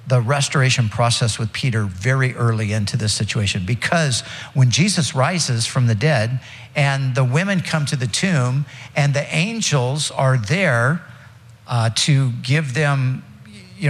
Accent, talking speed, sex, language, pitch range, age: American, 145 wpm, male, English, 120-165 Hz, 50-69